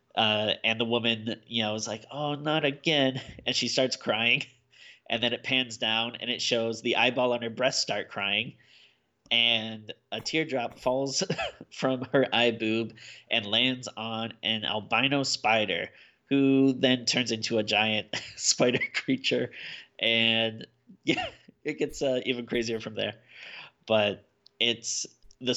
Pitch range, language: 110-135 Hz, English